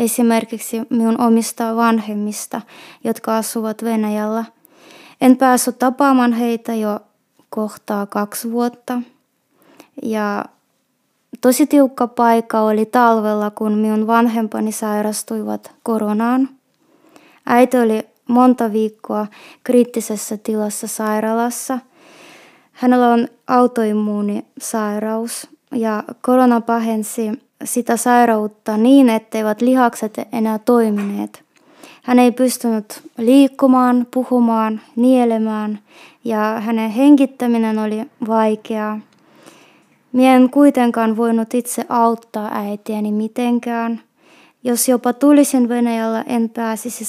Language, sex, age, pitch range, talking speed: Finnish, female, 20-39, 220-255 Hz, 90 wpm